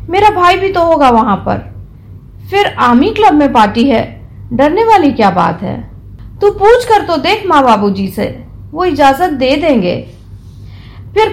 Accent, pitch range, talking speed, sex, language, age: native, 205-330 Hz, 165 wpm, female, Hindi, 40-59